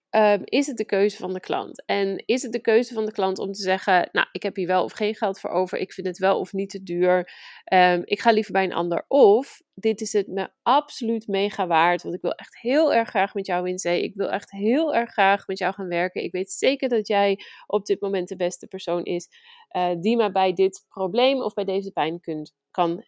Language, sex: Dutch, female